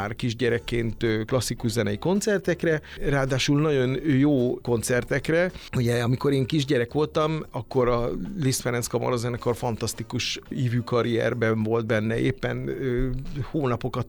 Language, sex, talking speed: Hungarian, male, 110 wpm